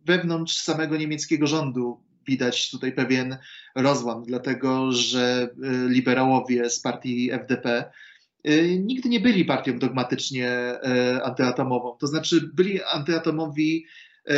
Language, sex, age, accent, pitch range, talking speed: Polish, male, 30-49, native, 130-165 Hz, 100 wpm